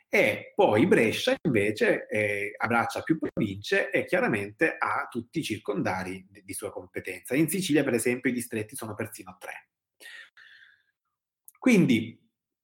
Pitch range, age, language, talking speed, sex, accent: 110-140 Hz, 30-49, Italian, 125 wpm, male, native